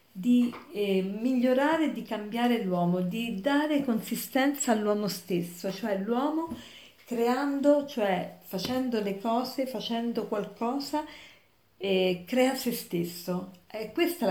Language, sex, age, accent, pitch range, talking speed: Italian, female, 40-59, native, 195-250 Hz, 110 wpm